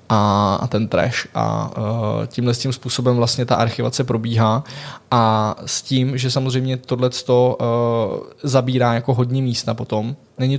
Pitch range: 115-125 Hz